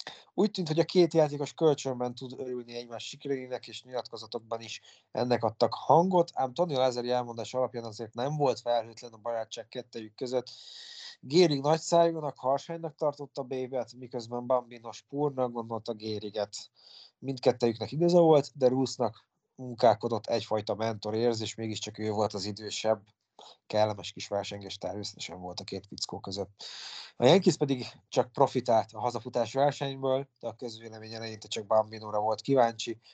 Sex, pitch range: male, 110-130 Hz